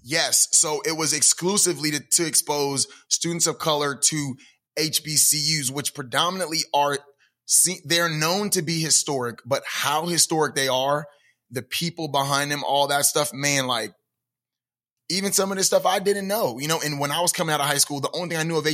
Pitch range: 125-155 Hz